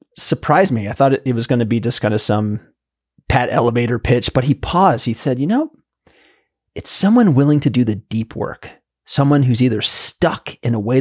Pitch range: 115-150 Hz